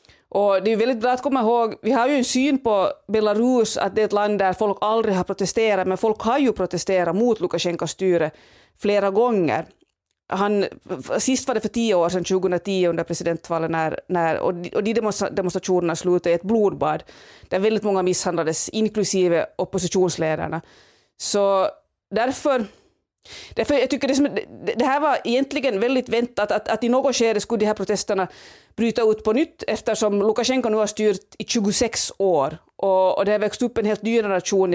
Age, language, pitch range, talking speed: 30-49, Swedish, 185-230 Hz, 175 wpm